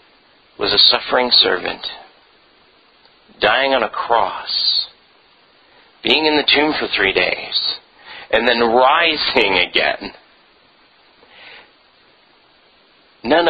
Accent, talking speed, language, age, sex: American, 90 wpm, English, 40-59, male